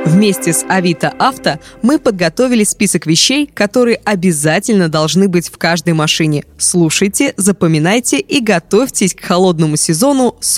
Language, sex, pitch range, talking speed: Russian, female, 165-225 Hz, 130 wpm